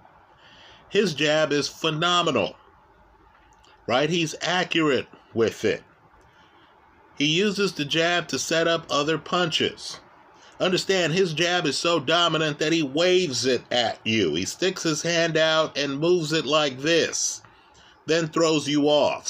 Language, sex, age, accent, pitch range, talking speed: English, male, 30-49, American, 150-180 Hz, 135 wpm